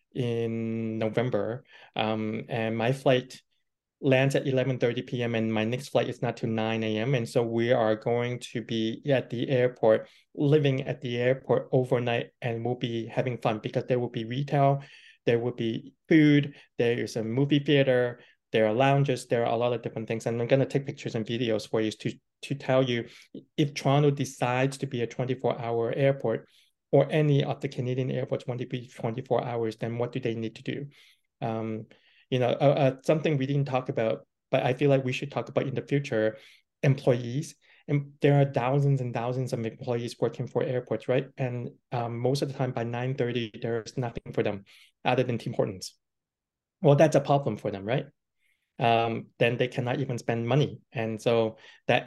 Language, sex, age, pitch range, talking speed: English, male, 20-39, 115-135 Hz, 195 wpm